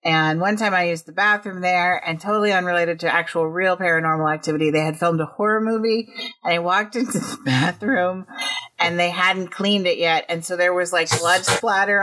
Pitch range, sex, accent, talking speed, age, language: 165-205 Hz, female, American, 205 wpm, 40-59, English